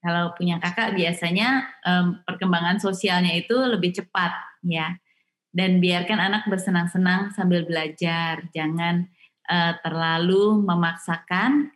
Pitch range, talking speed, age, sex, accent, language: 170-215 Hz, 105 wpm, 20-39, female, native, Indonesian